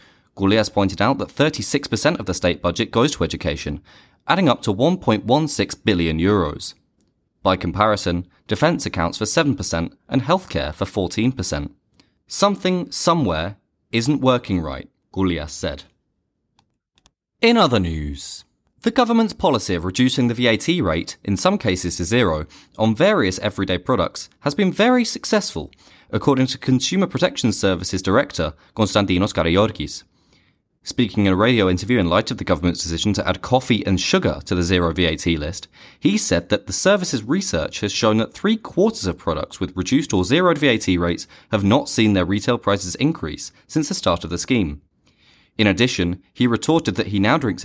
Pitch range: 90-130 Hz